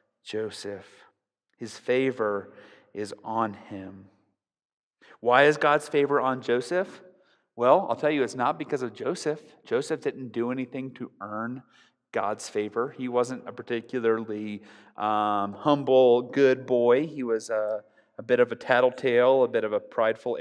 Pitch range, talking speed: 110-145 Hz, 145 wpm